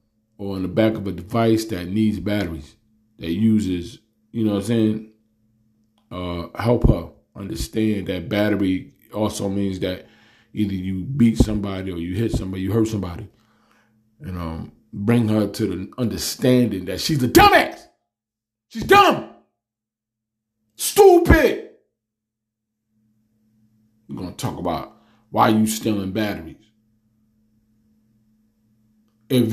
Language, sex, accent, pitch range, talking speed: English, male, American, 110-115 Hz, 125 wpm